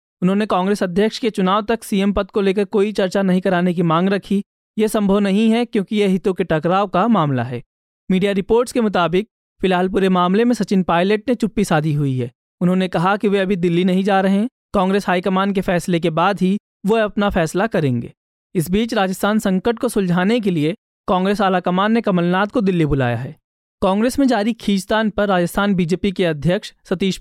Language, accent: Hindi, native